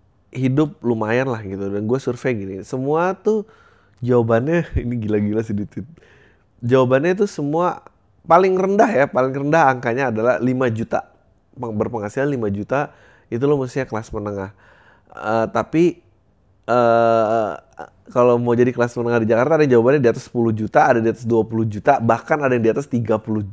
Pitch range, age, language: 100-130 Hz, 20-39, Indonesian